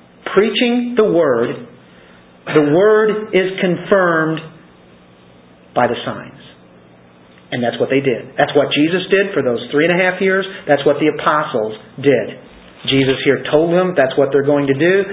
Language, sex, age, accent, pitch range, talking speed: English, male, 40-59, American, 140-180 Hz, 165 wpm